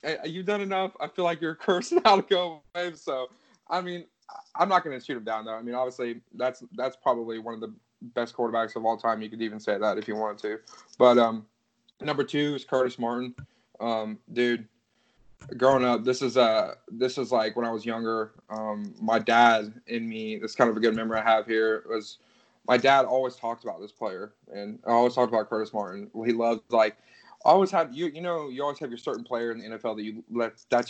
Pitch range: 110-125 Hz